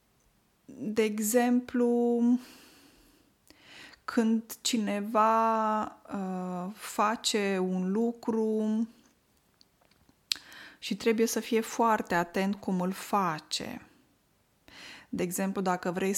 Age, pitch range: 20-39, 185-245 Hz